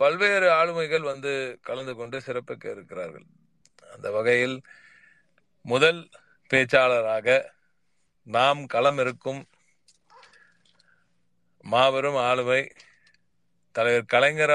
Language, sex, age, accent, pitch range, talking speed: Tamil, male, 40-59, native, 120-155 Hz, 75 wpm